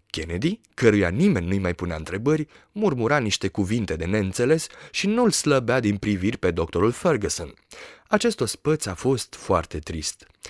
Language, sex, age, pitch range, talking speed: Romanian, male, 30-49, 100-140 Hz, 155 wpm